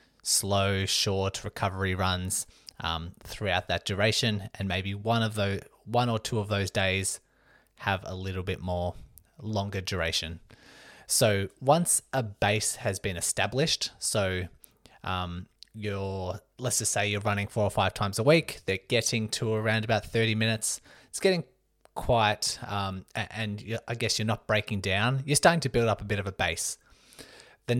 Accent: Australian